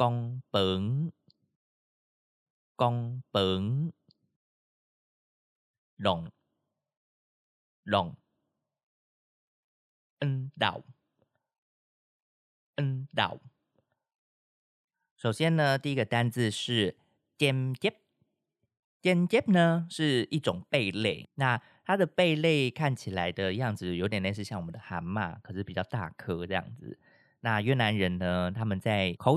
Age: 30-49